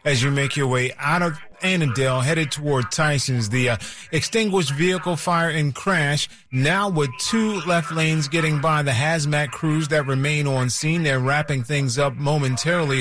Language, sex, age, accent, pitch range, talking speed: English, male, 30-49, American, 130-160 Hz, 170 wpm